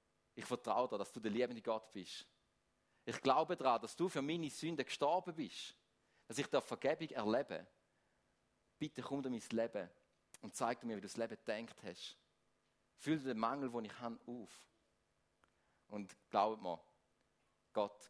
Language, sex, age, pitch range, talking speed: German, male, 40-59, 110-145 Hz, 165 wpm